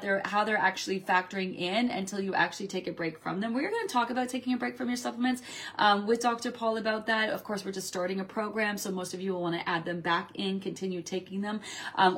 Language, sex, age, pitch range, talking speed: English, female, 30-49, 195-270 Hz, 260 wpm